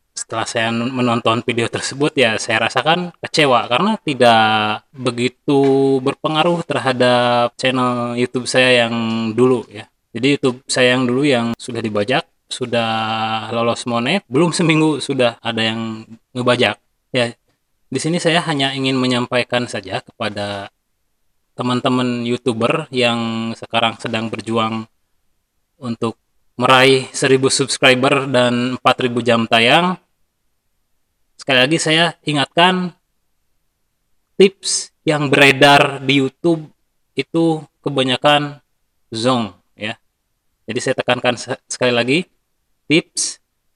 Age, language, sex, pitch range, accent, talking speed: 20-39, Indonesian, male, 115-135 Hz, native, 110 wpm